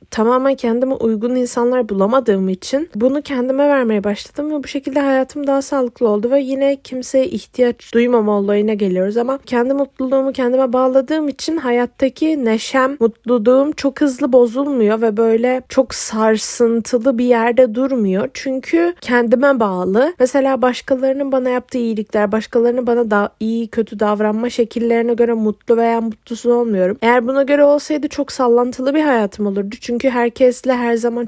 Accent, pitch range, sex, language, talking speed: native, 210-255 Hz, female, Turkish, 150 wpm